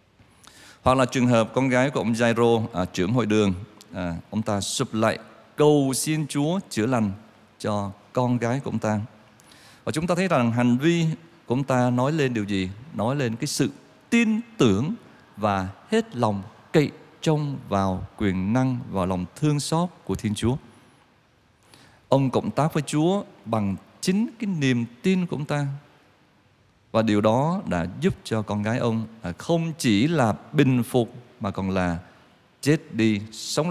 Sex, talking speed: male, 175 wpm